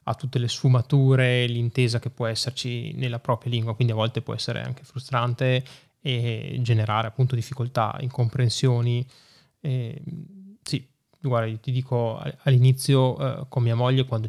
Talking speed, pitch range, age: 145 wpm, 120-140 Hz, 20-39